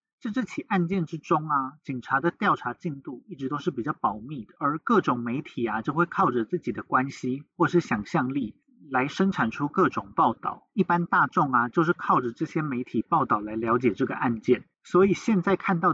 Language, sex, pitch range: Chinese, male, 125-180 Hz